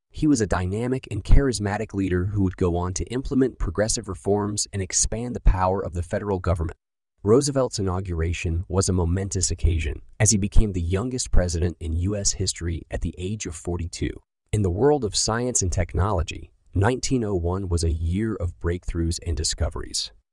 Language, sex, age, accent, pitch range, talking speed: English, male, 30-49, American, 85-110 Hz, 170 wpm